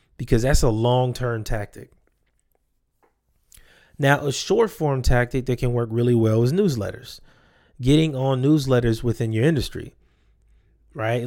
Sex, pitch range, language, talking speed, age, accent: male, 115-145 Hz, English, 120 wpm, 20-39, American